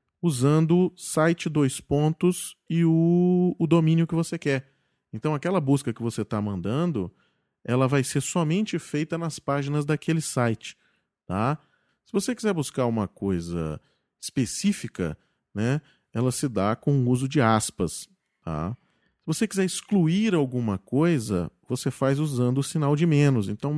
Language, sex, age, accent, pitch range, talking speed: Portuguese, male, 40-59, Brazilian, 120-165 Hz, 145 wpm